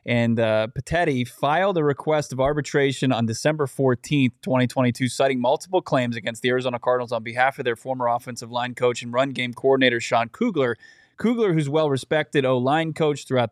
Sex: male